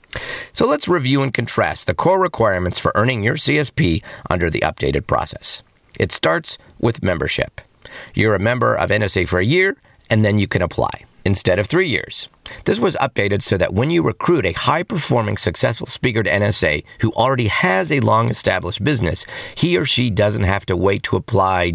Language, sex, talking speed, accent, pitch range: English, male, 180 wpm, American, 95-130 Hz